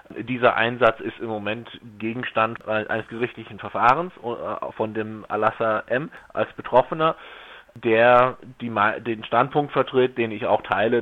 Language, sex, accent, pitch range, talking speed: German, male, German, 105-120 Hz, 125 wpm